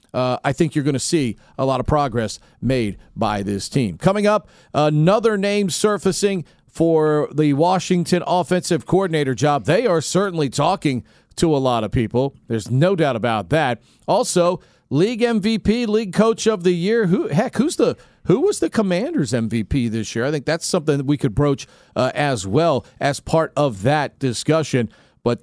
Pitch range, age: 130-185 Hz, 40-59